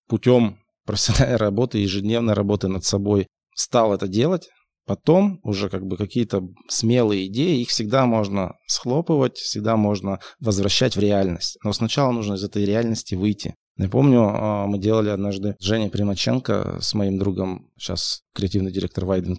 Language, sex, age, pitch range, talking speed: Russian, male, 20-39, 100-120 Hz, 145 wpm